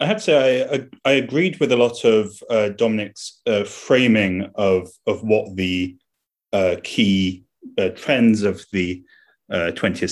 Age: 30-49